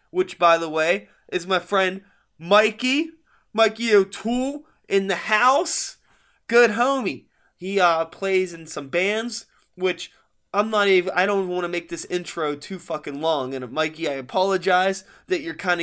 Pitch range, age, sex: 175-210 Hz, 20-39, male